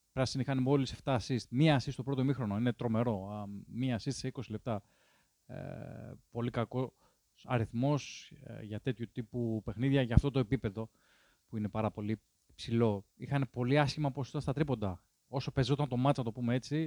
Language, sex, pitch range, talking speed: Greek, male, 110-135 Hz, 170 wpm